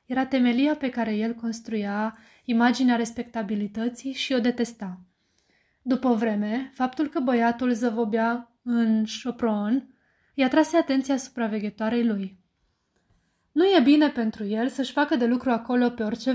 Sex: female